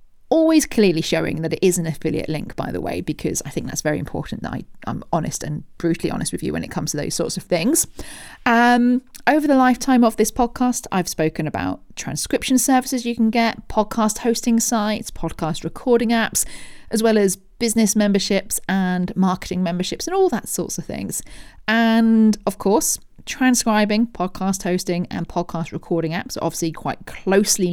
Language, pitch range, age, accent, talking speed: English, 170-235 Hz, 40-59, British, 180 wpm